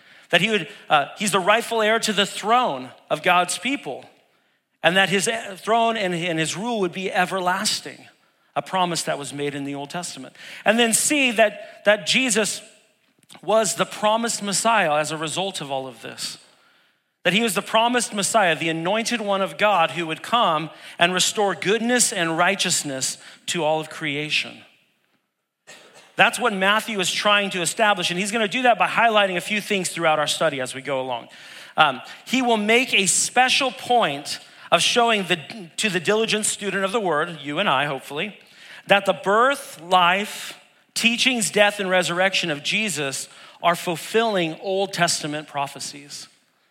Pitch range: 165-220 Hz